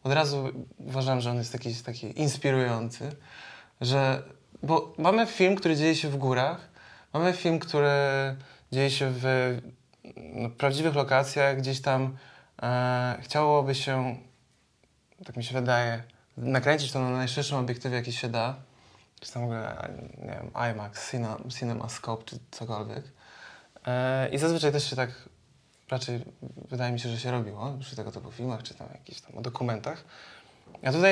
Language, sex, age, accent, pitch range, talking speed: Polish, male, 20-39, native, 120-140 Hz, 150 wpm